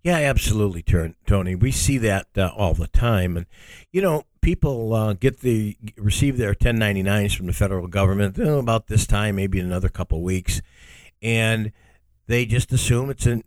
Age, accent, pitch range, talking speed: 60-79, American, 95-120 Hz, 180 wpm